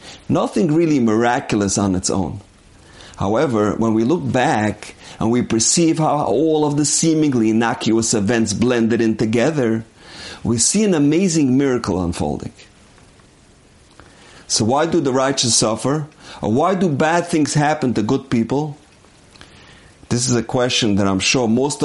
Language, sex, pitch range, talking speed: English, male, 105-150 Hz, 145 wpm